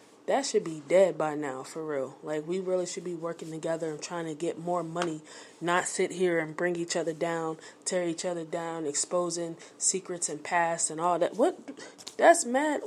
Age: 20-39